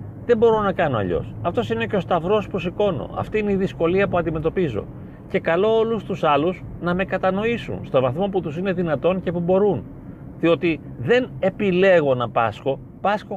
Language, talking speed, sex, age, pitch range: Greek, 185 wpm, male, 40-59, 135-195 Hz